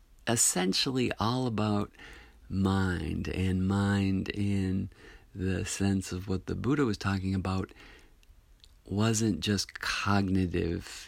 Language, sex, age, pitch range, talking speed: English, male, 50-69, 85-100 Hz, 105 wpm